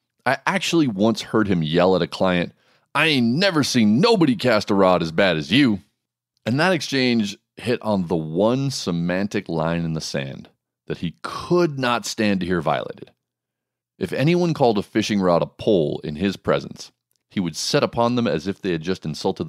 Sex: male